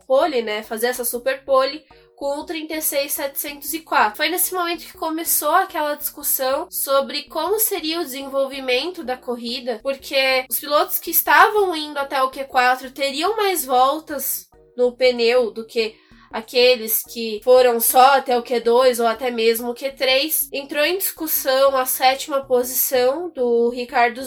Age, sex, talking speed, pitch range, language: 10-29, female, 145 wpm, 250-295 Hz, Portuguese